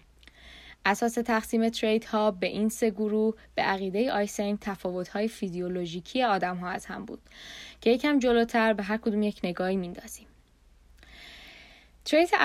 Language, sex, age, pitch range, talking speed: Persian, female, 10-29, 185-235 Hz, 135 wpm